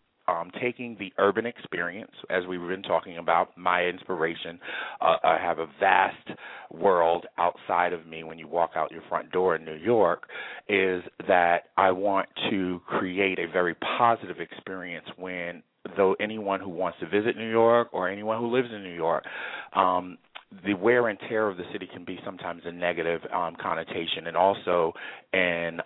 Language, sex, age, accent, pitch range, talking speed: English, male, 30-49, American, 90-110 Hz, 170 wpm